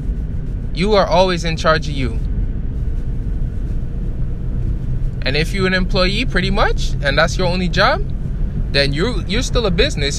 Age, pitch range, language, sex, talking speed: 20-39, 140-180 Hz, English, male, 145 wpm